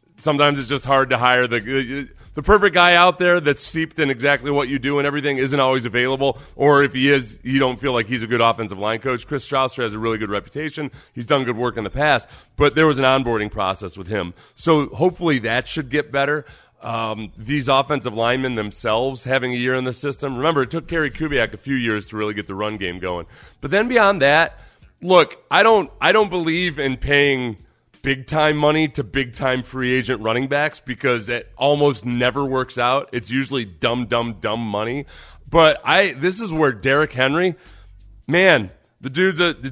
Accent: American